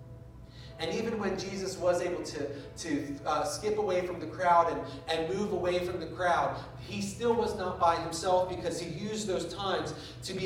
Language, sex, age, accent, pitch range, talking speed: English, male, 30-49, American, 140-190 Hz, 195 wpm